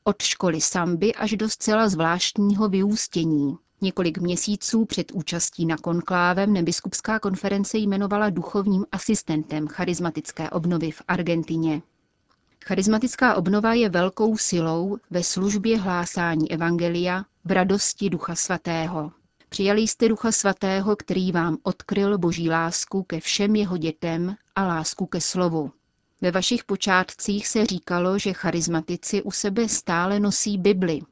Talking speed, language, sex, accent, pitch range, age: 125 wpm, Czech, female, native, 170-205 Hz, 30-49